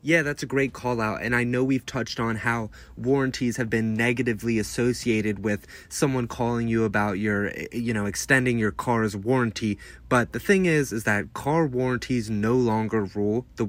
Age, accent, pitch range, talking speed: 30-49, American, 105-130 Hz, 185 wpm